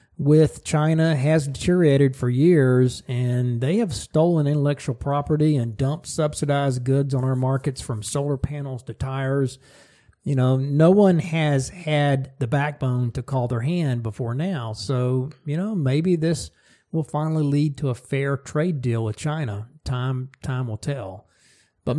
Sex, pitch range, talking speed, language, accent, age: male, 125-155 Hz, 160 wpm, English, American, 40-59